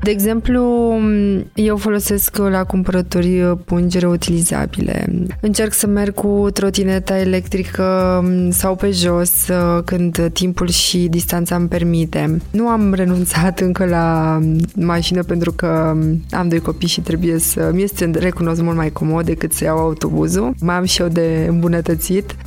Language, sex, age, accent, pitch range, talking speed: Romanian, female, 20-39, native, 170-195 Hz, 140 wpm